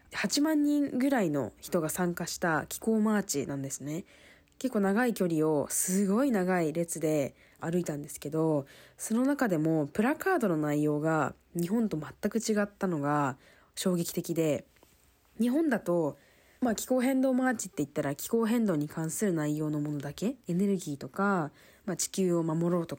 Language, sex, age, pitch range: Japanese, female, 20-39, 150-220 Hz